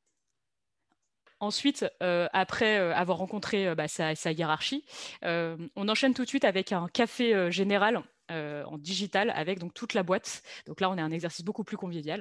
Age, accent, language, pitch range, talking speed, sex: 30-49, French, French, 170-220 Hz, 175 wpm, female